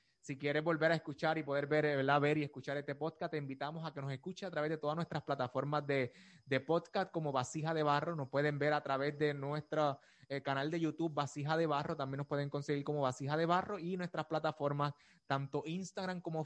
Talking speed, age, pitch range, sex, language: 220 wpm, 20-39, 145-190 Hz, male, Spanish